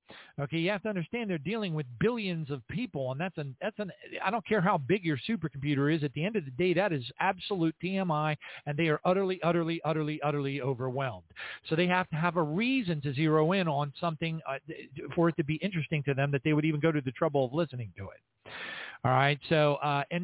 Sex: male